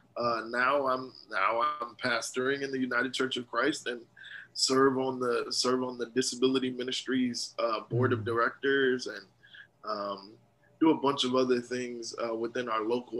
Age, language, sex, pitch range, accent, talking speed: 20-39, English, male, 120-150 Hz, American, 170 wpm